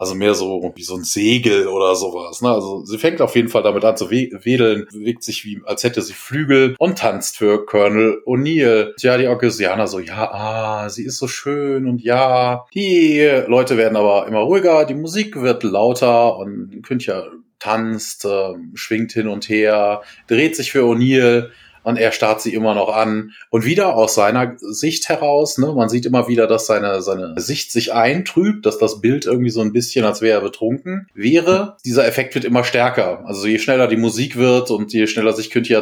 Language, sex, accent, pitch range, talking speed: German, male, German, 110-135 Hz, 205 wpm